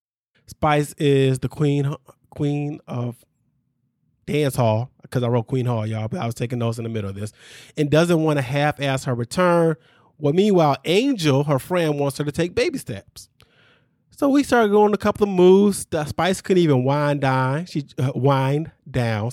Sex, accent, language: male, American, English